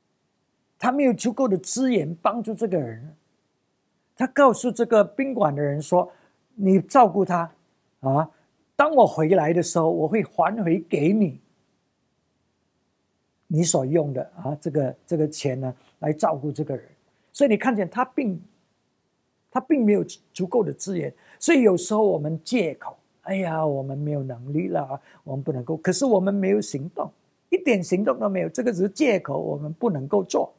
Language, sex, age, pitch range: English, male, 50-69, 160-225 Hz